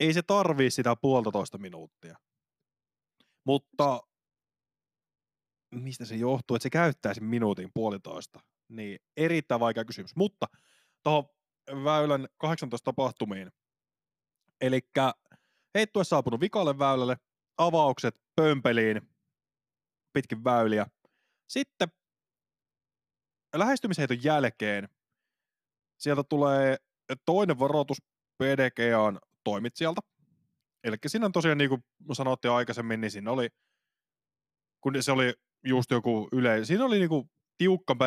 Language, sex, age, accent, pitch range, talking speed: Finnish, male, 20-39, native, 115-150 Hz, 100 wpm